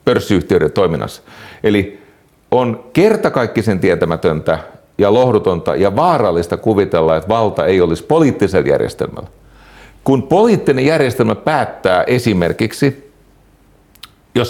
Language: Finnish